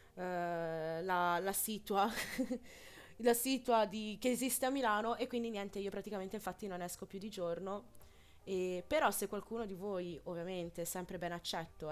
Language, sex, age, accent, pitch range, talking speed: Italian, female, 20-39, native, 190-225 Hz, 155 wpm